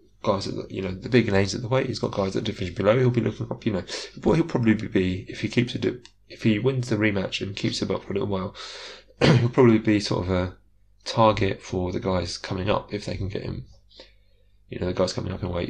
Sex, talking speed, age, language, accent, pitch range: male, 265 wpm, 20-39, English, British, 95-120 Hz